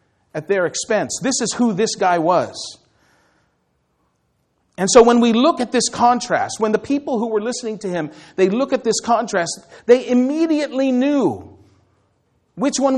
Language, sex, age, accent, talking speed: English, male, 40-59, American, 160 wpm